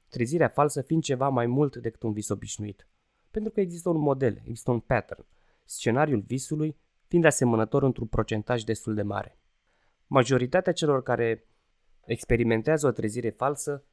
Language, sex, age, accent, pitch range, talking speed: Romanian, male, 20-39, native, 115-155 Hz, 145 wpm